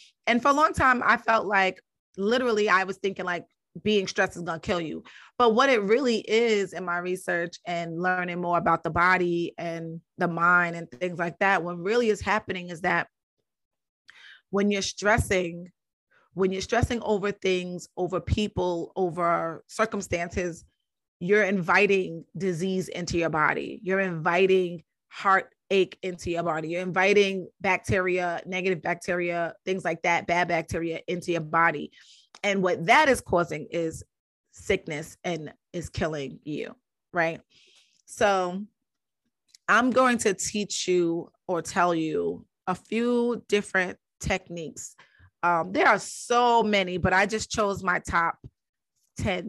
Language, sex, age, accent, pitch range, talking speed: English, female, 30-49, American, 170-205 Hz, 150 wpm